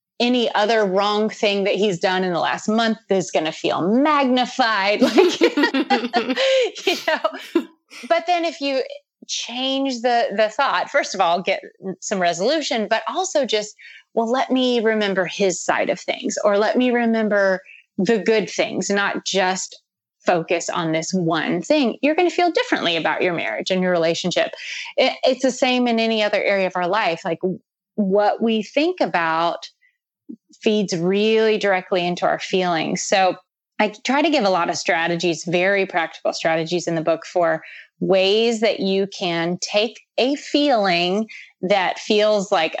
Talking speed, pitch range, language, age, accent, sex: 165 wpm, 180-255 Hz, English, 30-49, American, female